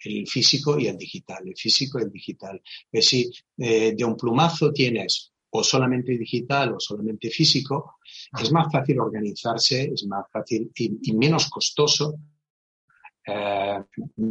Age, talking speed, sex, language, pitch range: 30-49, 145 wpm, male, Spanish, 110-135 Hz